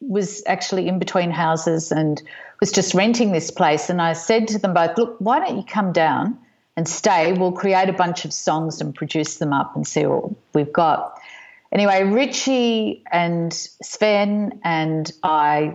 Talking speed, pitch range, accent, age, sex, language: 175 wpm, 160-205 Hz, Australian, 50-69, female, English